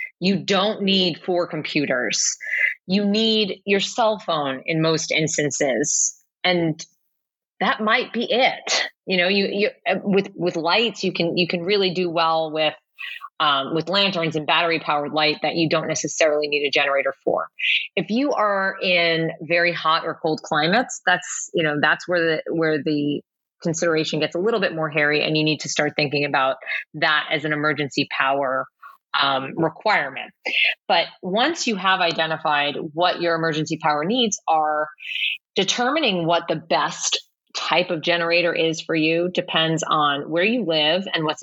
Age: 30-49